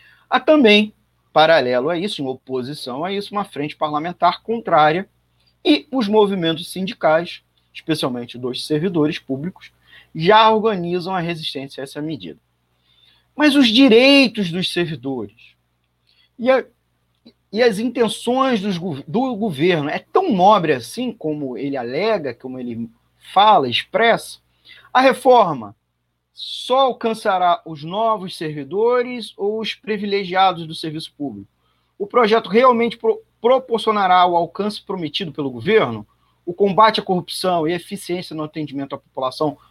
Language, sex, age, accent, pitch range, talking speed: Portuguese, male, 40-59, Brazilian, 135-215 Hz, 125 wpm